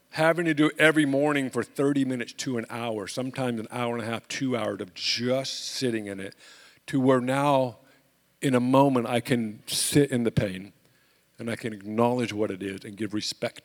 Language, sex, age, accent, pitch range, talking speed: English, male, 50-69, American, 120-155 Hz, 205 wpm